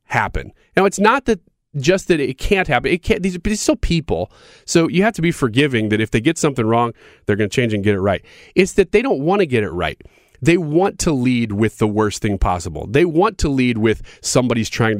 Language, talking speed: English, 245 wpm